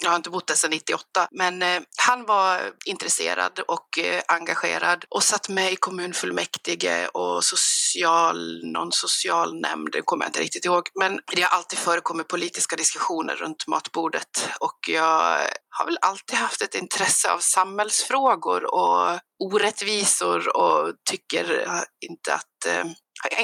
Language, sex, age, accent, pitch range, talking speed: Swedish, female, 30-49, native, 170-245 Hz, 145 wpm